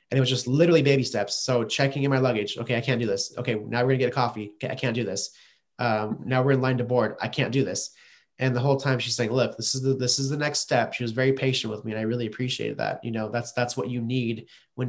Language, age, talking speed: English, 20-39, 295 wpm